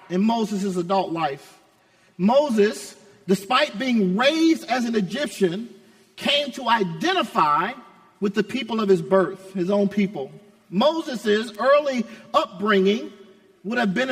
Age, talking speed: 40-59, 125 wpm